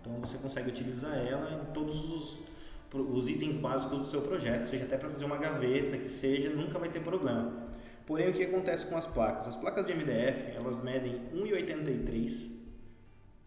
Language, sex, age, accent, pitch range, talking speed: Portuguese, male, 20-39, Brazilian, 125-150 Hz, 180 wpm